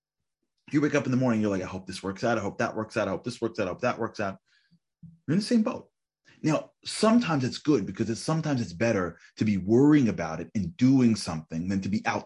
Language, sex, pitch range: English, male, 95-120 Hz